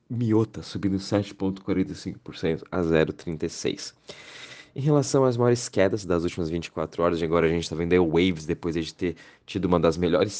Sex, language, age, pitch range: male, Portuguese, 20-39, 85-95 Hz